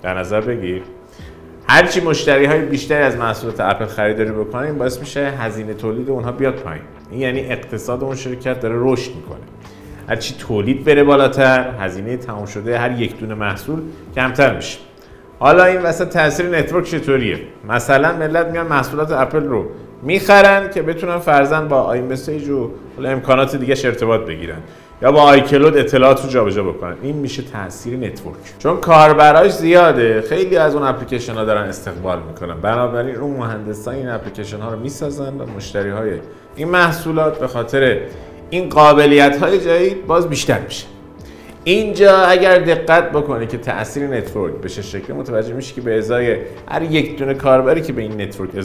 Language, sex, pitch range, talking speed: Persian, male, 110-150 Hz, 160 wpm